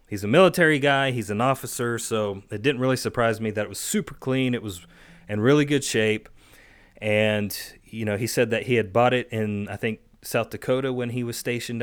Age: 30-49